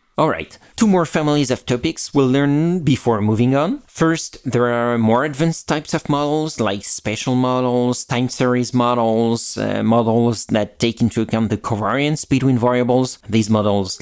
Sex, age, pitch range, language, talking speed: male, 30-49, 110-140 Hz, English, 160 wpm